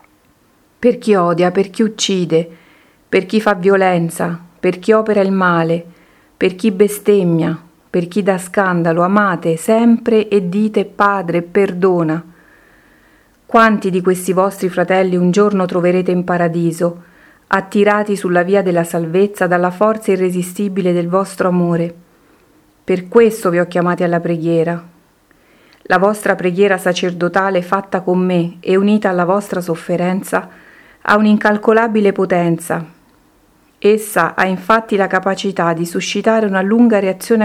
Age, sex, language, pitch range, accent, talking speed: 40-59, female, Italian, 175-205 Hz, native, 130 wpm